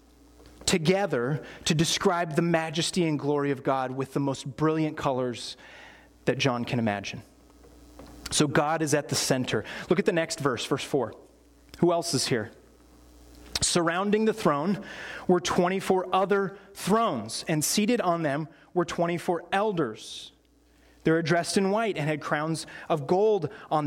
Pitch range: 140-185 Hz